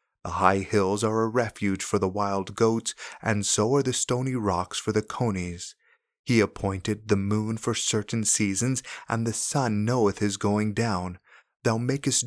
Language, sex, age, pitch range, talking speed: English, male, 30-49, 100-120 Hz, 170 wpm